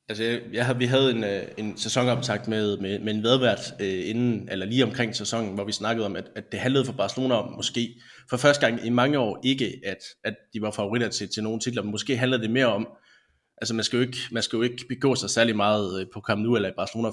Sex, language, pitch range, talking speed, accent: male, Danish, 105-125 Hz, 260 wpm, native